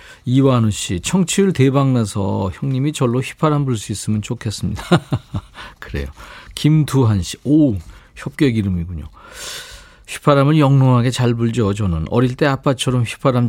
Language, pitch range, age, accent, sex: Korean, 105-160 Hz, 50-69, native, male